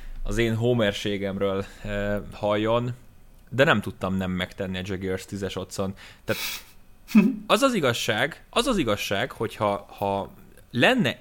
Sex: male